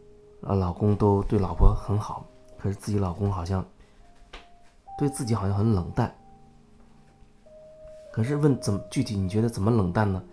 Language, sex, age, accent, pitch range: Chinese, male, 20-39, native, 95-115 Hz